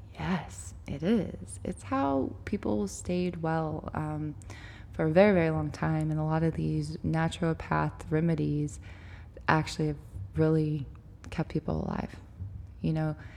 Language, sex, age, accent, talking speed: English, female, 20-39, American, 135 wpm